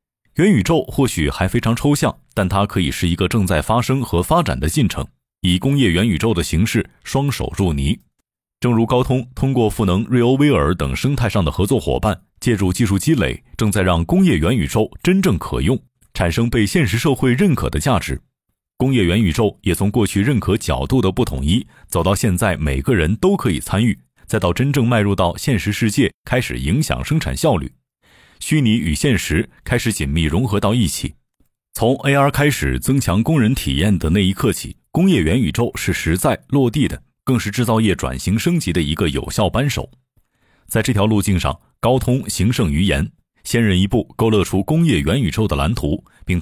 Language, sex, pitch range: Chinese, male, 90-130 Hz